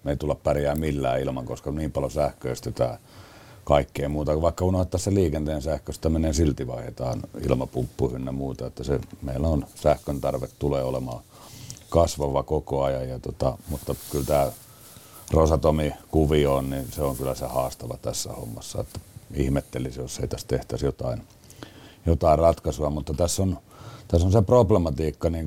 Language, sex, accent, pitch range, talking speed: Finnish, male, native, 70-85 Hz, 155 wpm